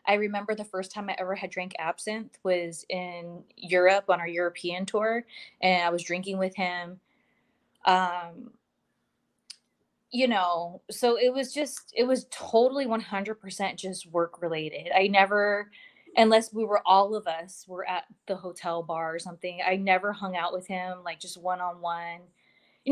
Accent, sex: American, female